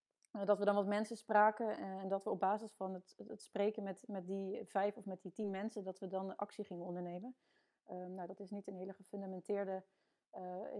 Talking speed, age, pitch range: 215 wpm, 30-49, 185-210 Hz